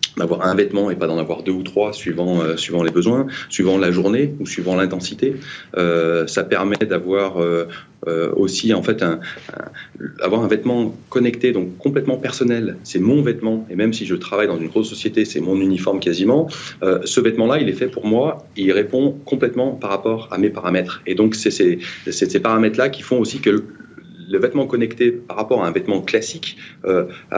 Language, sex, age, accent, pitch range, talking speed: French, male, 30-49, French, 90-120 Hz, 210 wpm